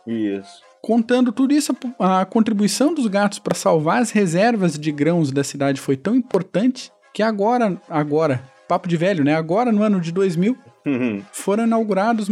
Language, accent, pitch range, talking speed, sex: Portuguese, Brazilian, 150-215 Hz, 155 wpm, male